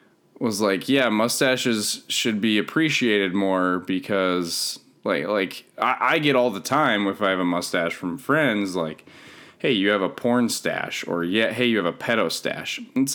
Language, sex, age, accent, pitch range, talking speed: English, male, 20-39, American, 105-160 Hz, 185 wpm